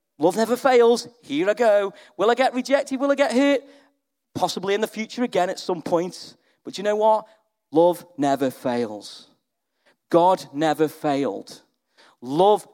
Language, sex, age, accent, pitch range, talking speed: English, male, 40-59, British, 170-235 Hz, 155 wpm